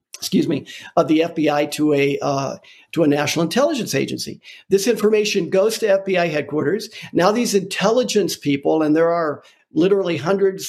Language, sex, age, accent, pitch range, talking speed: English, male, 50-69, American, 155-235 Hz, 155 wpm